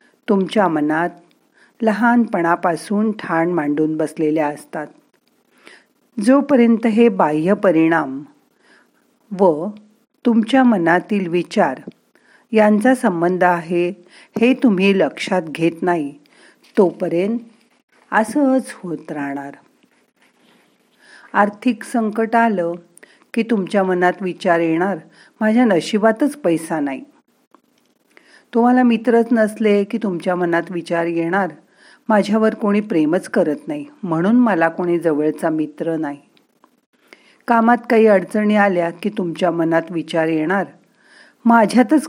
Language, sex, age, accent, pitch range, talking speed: Marathi, female, 50-69, native, 170-235 Hz, 100 wpm